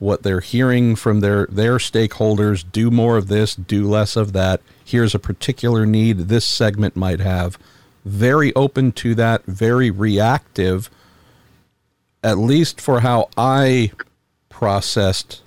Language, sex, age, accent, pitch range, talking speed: English, male, 50-69, American, 100-125 Hz, 135 wpm